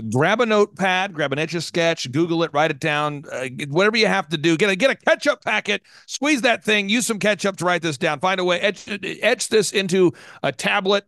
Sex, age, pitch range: male, 40-59, 140-195 Hz